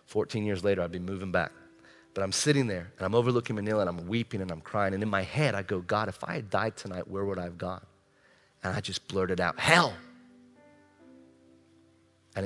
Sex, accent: male, American